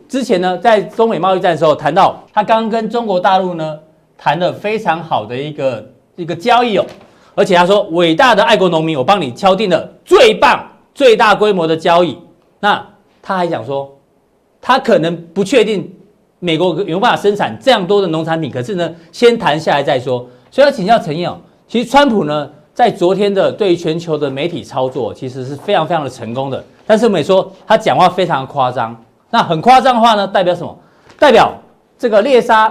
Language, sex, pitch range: Chinese, male, 150-210 Hz